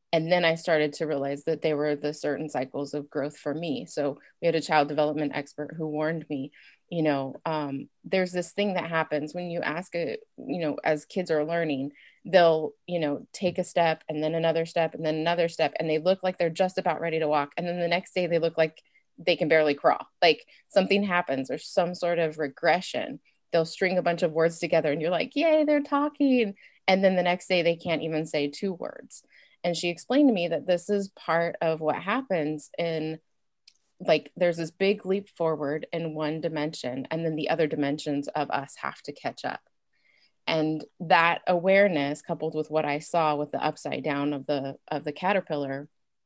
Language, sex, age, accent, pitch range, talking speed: English, female, 30-49, American, 150-175 Hz, 210 wpm